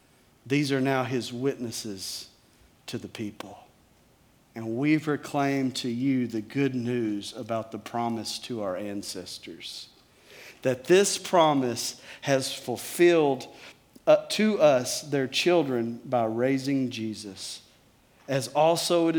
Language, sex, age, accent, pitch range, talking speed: English, male, 50-69, American, 115-150 Hz, 120 wpm